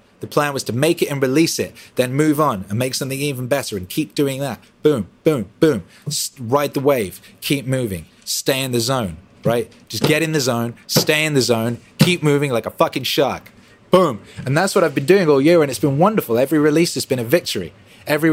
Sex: male